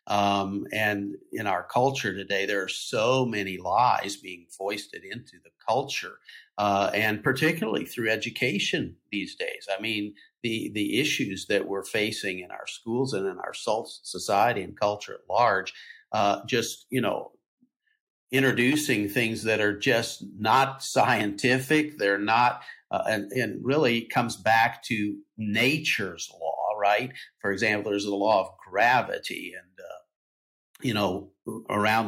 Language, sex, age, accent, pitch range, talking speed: English, male, 50-69, American, 100-130 Hz, 140 wpm